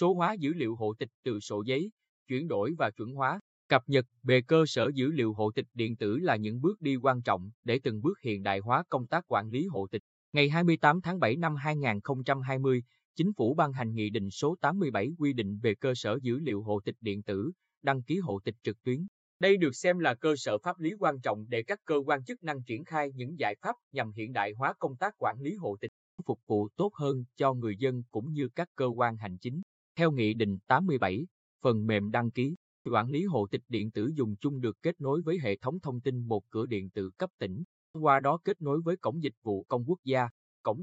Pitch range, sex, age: 110-155 Hz, male, 20-39